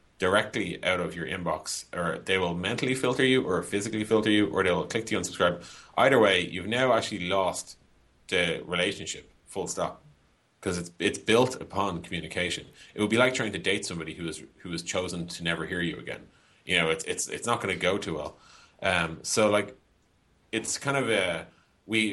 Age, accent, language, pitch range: 30-49, Irish, English, 90-105 Hz